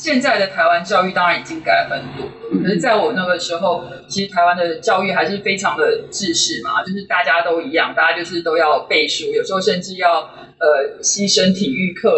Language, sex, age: Chinese, female, 20-39